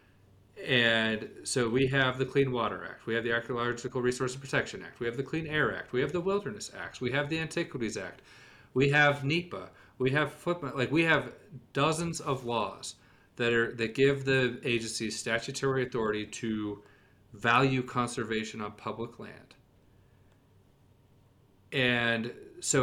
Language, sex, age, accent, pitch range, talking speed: English, male, 40-59, American, 105-130 Hz, 150 wpm